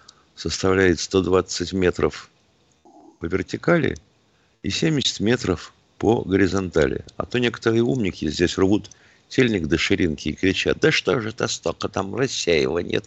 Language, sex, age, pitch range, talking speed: Russian, male, 50-69, 90-110 Hz, 130 wpm